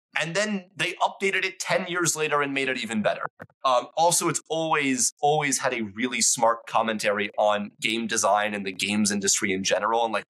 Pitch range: 110-160 Hz